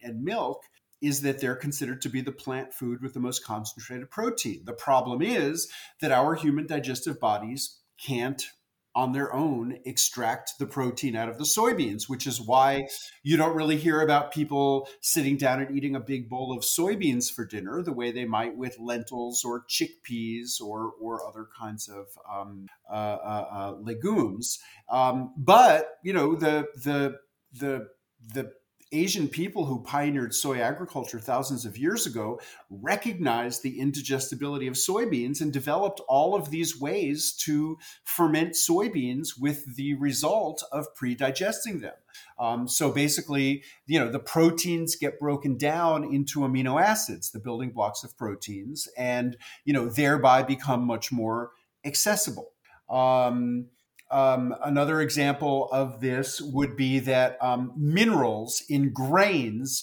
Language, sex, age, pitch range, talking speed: English, male, 40-59, 125-150 Hz, 150 wpm